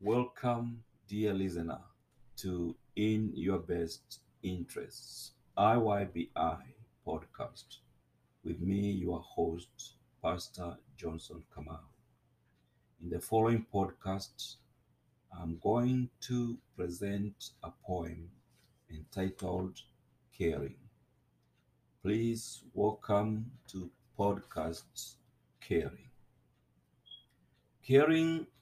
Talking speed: 75 wpm